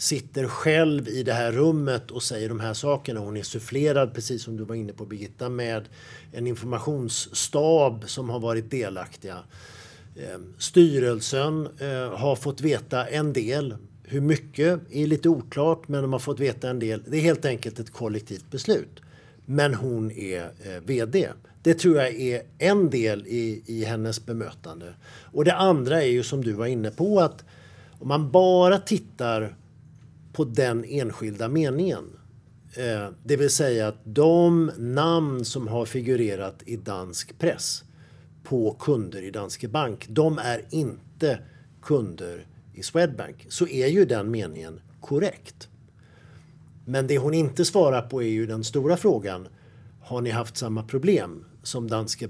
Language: English